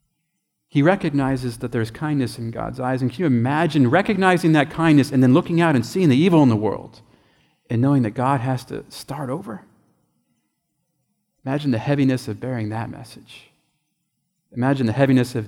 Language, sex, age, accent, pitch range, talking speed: English, male, 30-49, American, 110-140 Hz, 175 wpm